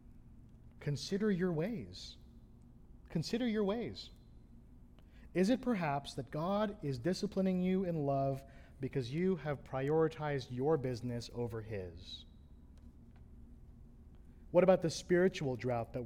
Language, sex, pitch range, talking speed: English, male, 120-185 Hz, 110 wpm